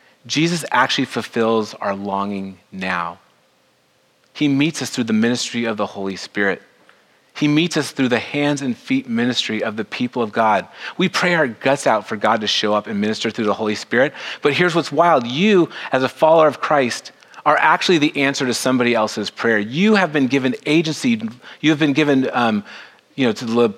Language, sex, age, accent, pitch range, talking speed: English, male, 30-49, American, 115-170 Hz, 195 wpm